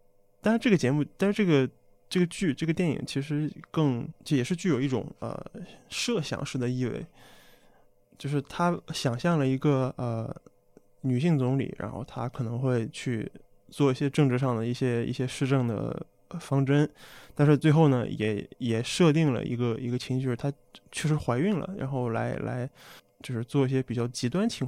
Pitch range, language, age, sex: 120-150 Hz, Chinese, 20-39, male